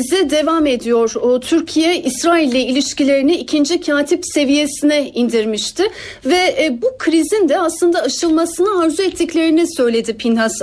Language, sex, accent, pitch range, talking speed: Turkish, female, native, 255-335 Hz, 125 wpm